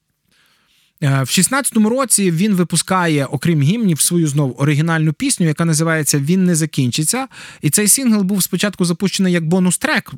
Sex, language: male, Ukrainian